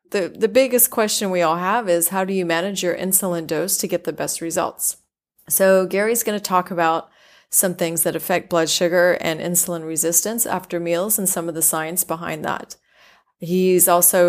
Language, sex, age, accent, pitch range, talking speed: English, female, 30-49, American, 165-190 Hz, 195 wpm